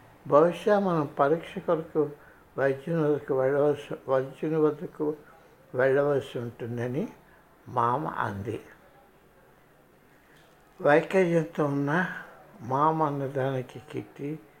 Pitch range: 135-170 Hz